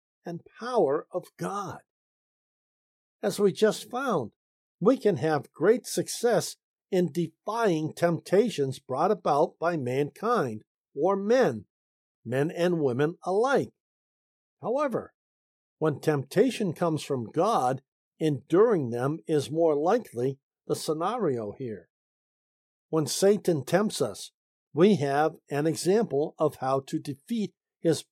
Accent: American